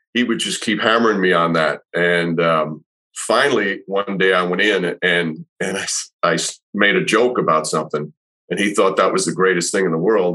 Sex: male